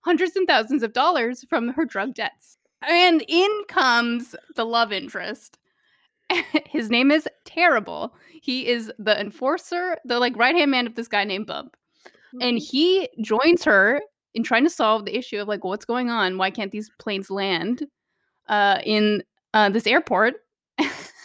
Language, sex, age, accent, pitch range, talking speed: English, female, 20-39, American, 215-315 Hz, 160 wpm